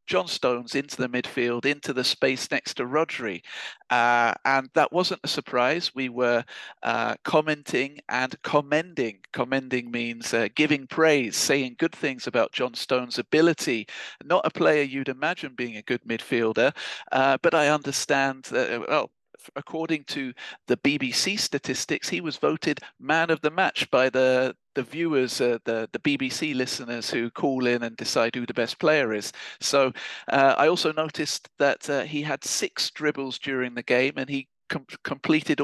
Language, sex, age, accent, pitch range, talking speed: English, male, 40-59, British, 120-145 Hz, 165 wpm